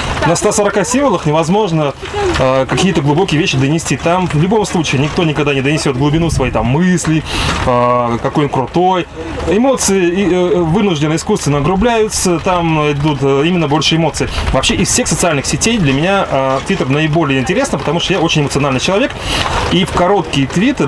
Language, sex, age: Russian, male, 20-39